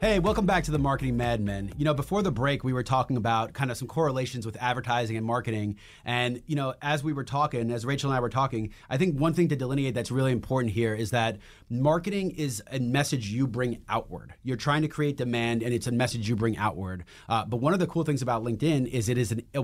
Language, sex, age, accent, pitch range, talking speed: English, male, 30-49, American, 115-145 Hz, 255 wpm